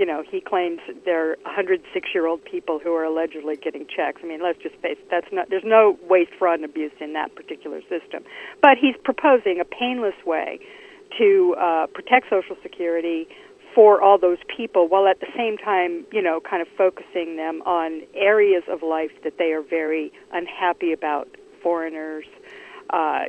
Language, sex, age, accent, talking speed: English, female, 50-69, American, 175 wpm